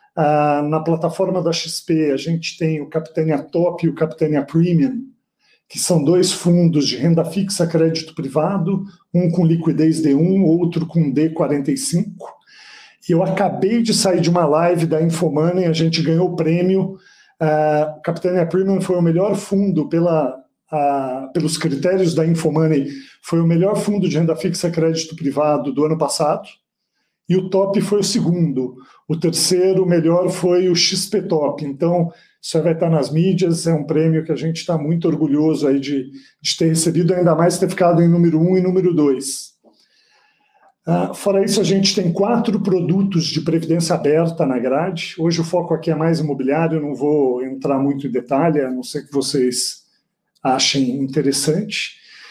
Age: 40-59